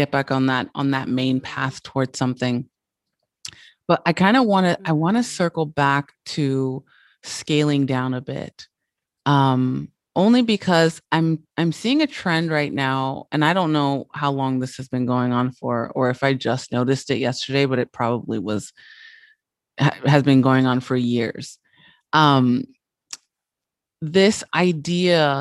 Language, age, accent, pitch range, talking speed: English, 30-49, American, 135-170 Hz, 165 wpm